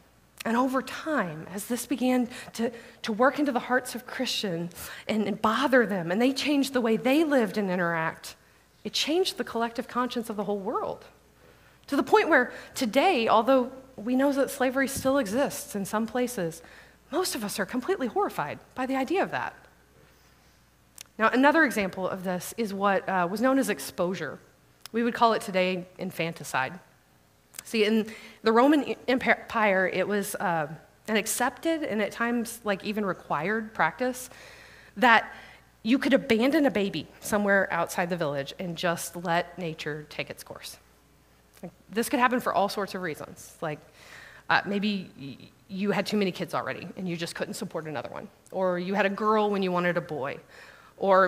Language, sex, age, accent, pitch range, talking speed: English, female, 30-49, American, 175-250 Hz, 175 wpm